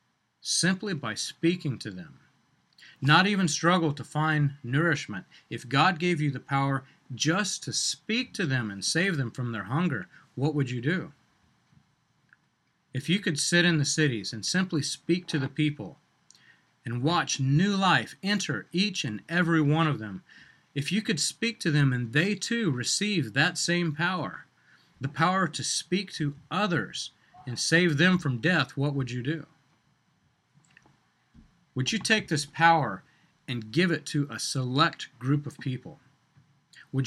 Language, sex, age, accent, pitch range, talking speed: English, male, 40-59, American, 135-170 Hz, 160 wpm